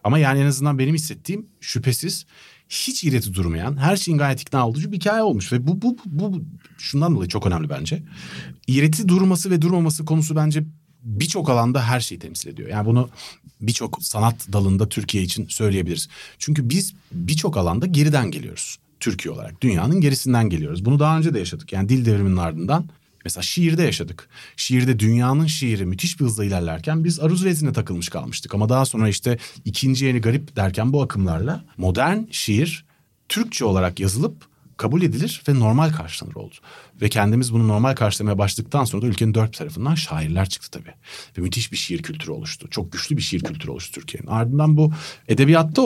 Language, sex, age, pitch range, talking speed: Turkish, male, 40-59, 110-155 Hz, 175 wpm